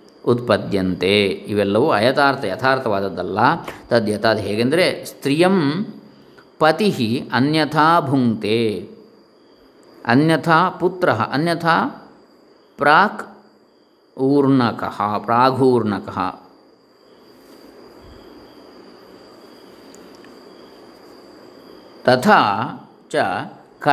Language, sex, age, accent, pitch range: Kannada, male, 50-69, native, 110-155 Hz